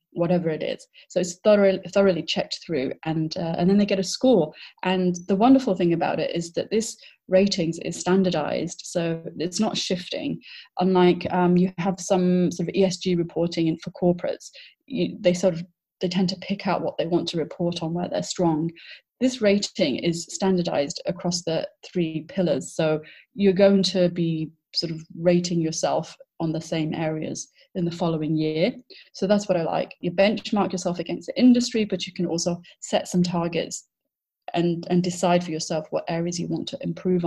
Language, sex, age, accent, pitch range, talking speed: English, female, 30-49, British, 165-190 Hz, 190 wpm